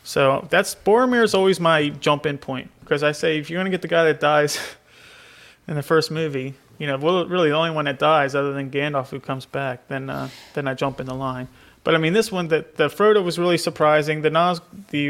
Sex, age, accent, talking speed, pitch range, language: male, 30-49, American, 245 wpm, 135-160 Hz, English